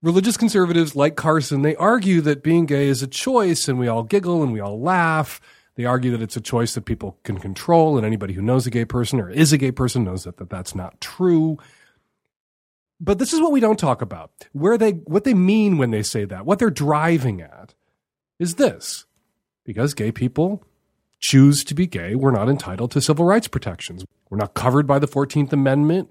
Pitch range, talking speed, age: 120-185 Hz, 215 wpm, 40-59